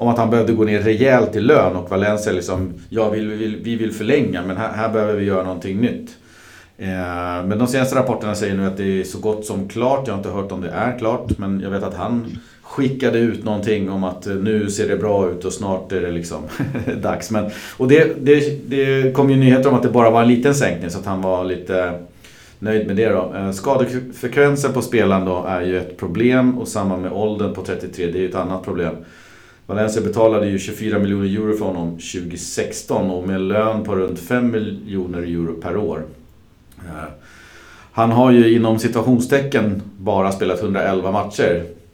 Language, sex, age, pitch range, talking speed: Swedish, male, 40-59, 90-115 Hz, 205 wpm